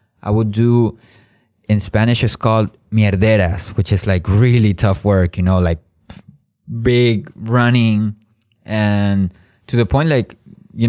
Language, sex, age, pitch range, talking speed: Russian, male, 20-39, 100-120 Hz, 140 wpm